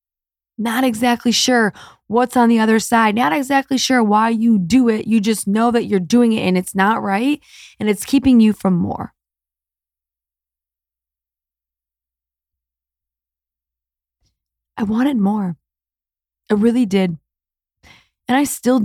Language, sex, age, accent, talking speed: English, female, 20-39, American, 130 wpm